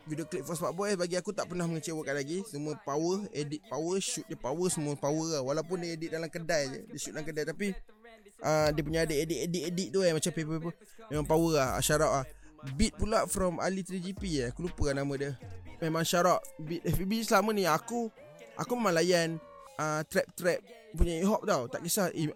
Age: 20-39